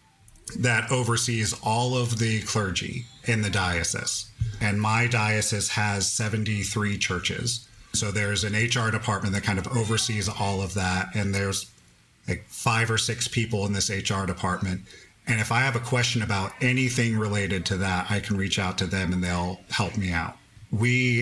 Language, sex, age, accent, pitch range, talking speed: English, male, 40-59, American, 100-115 Hz, 175 wpm